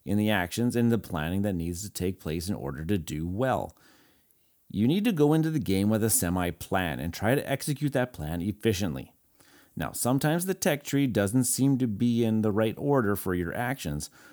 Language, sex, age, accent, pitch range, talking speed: English, male, 30-49, American, 95-135 Hz, 205 wpm